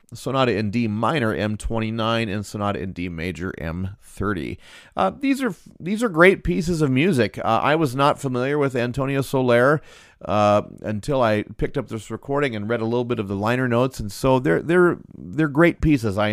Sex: male